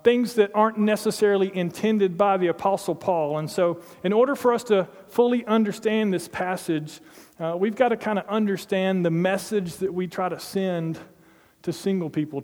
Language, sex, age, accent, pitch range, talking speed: English, male, 40-59, American, 160-195 Hz, 180 wpm